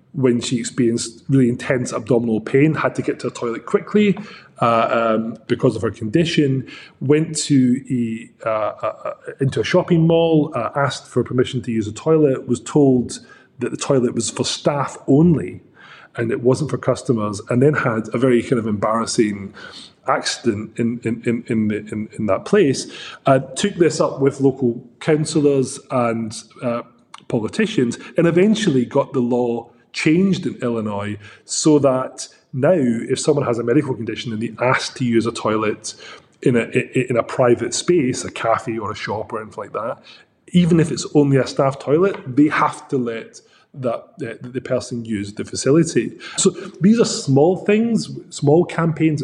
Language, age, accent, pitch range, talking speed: English, 30-49, British, 115-155 Hz, 175 wpm